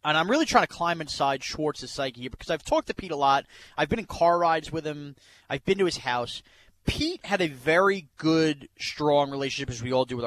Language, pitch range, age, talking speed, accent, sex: English, 140-180 Hz, 30-49, 240 wpm, American, male